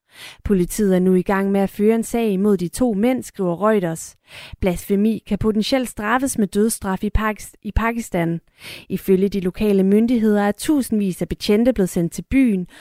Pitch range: 190-230 Hz